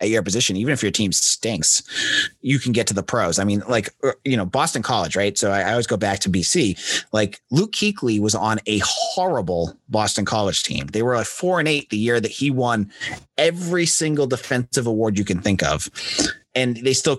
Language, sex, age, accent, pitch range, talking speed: English, male, 30-49, American, 100-135 Hz, 215 wpm